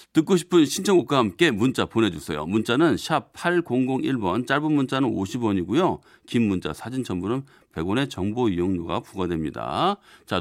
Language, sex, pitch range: Korean, male, 100-135 Hz